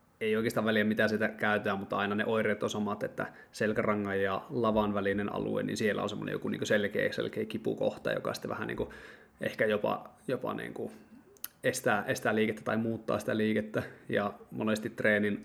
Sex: male